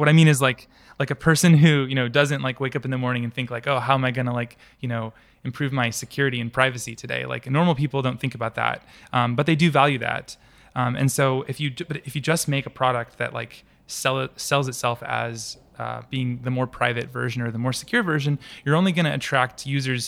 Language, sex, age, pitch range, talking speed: English, male, 20-39, 120-140 Hz, 250 wpm